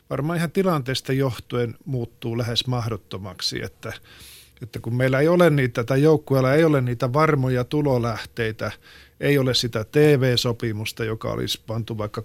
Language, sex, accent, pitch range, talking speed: Finnish, male, native, 115-135 Hz, 140 wpm